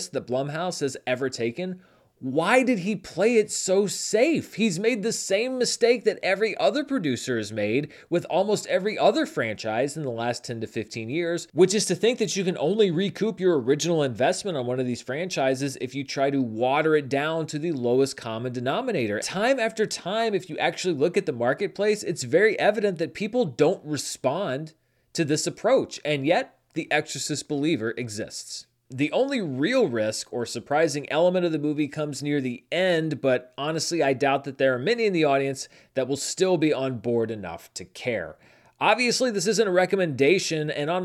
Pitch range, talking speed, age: 135-195 Hz, 190 wpm, 30-49